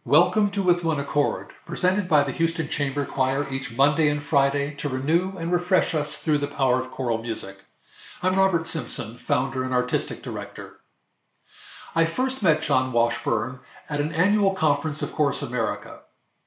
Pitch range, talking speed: 130-160 Hz, 165 wpm